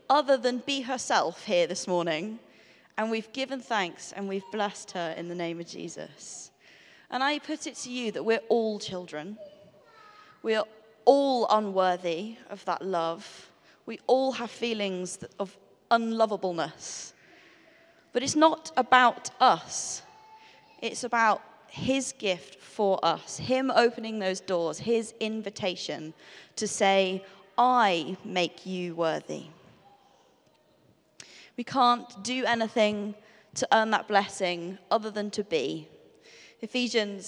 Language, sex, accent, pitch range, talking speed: English, female, British, 185-250 Hz, 125 wpm